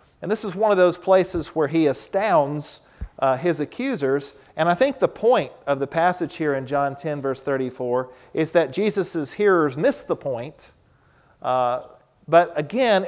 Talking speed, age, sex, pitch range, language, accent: 170 wpm, 40-59, male, 140-175 Hz, English, American